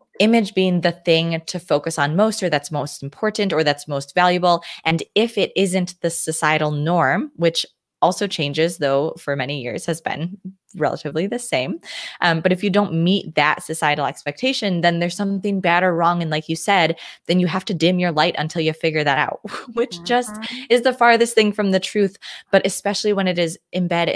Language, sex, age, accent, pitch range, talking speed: English, female, 20-39, American, 150-185 Hz, 200 wpm